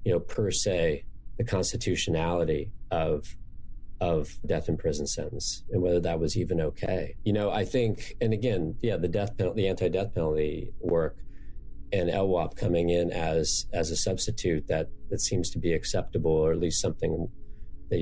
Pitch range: 85-105 Hz